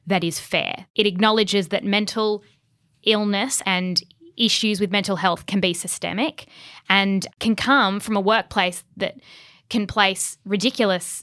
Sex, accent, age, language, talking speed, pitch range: female, Australian, 10-29, English, 140 wpm, 180-215 Hz